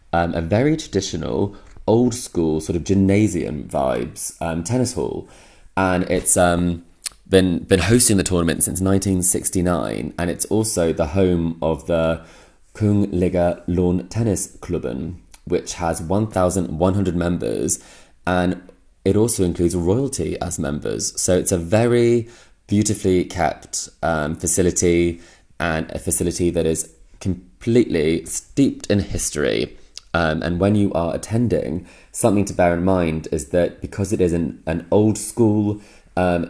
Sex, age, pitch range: male, 20-39, 85-100 Hz